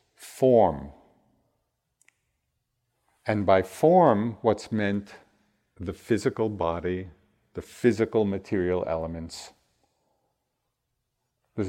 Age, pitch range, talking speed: 50-69, 90-115 Hz, 70 wpm